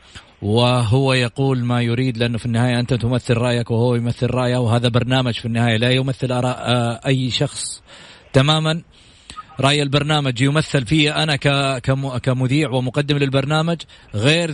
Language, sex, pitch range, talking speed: English, male, 125-145 Hz, 130 wpm